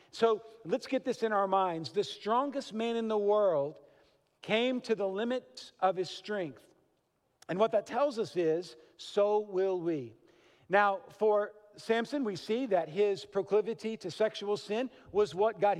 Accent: American